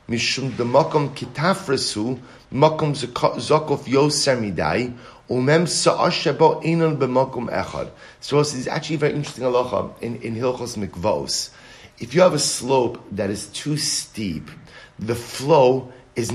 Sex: male